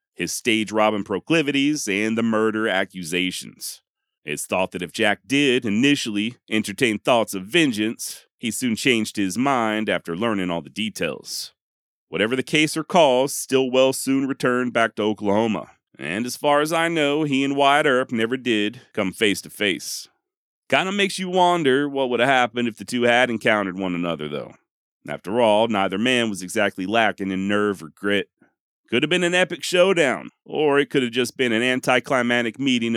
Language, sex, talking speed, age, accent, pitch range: English, male, 180 wpm, 40-59, American, 100-130 Hz